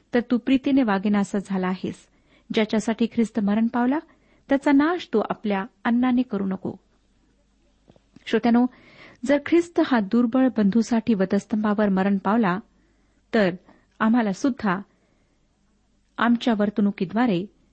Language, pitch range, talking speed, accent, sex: Marathi, 200-260 Hz, 110 wpm, native, female